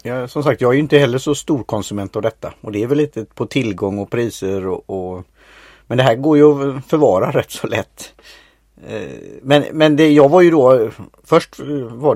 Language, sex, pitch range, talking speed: Swedish, male, 110-145 Hz, 210 wpm